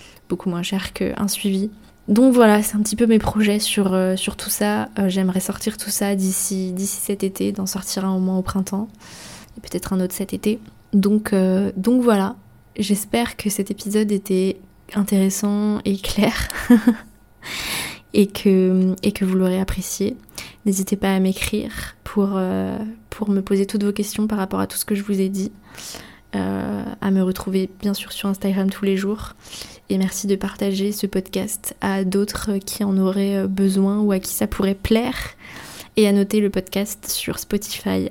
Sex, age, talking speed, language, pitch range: female, 20-39, 185 wpm, French, 190-210 Hz